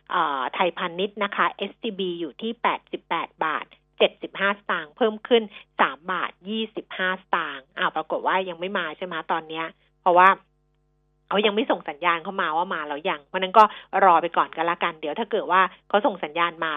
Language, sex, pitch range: Thai, female, 180-225 Hz